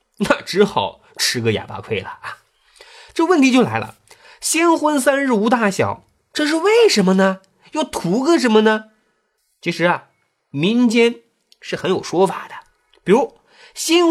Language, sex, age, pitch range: Chinese, male, 30-49, 170-265 Hz